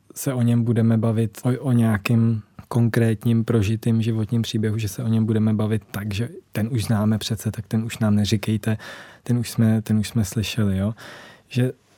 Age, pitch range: 20-39, 115-130 Hz